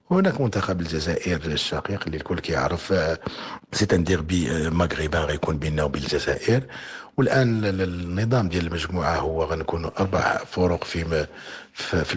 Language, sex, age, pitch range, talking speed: Arabic, male, 50-69, 85-100 Hz, 125 wpm